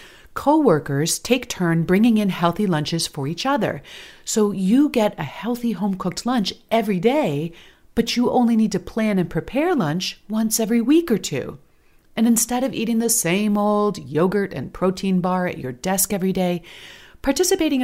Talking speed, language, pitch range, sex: 175 wpm, English, 170-230 Hz, female